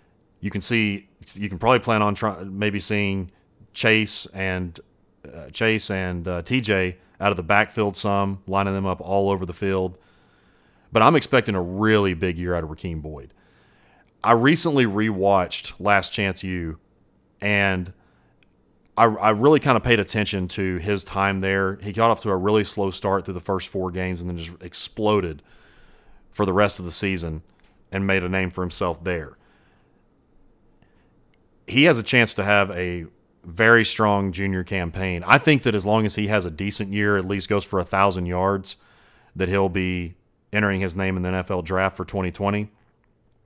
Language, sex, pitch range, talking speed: English, male, 90-110 Hz, 180 wpm